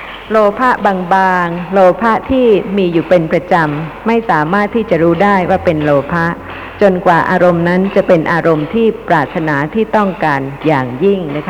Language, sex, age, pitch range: Thai, female, 60-79, 165-210 Hz